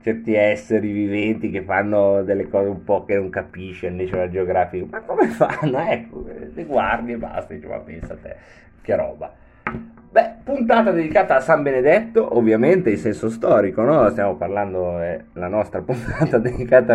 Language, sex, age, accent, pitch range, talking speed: Italian, male, 30-49, native, 105-155 Hz, 165 wpm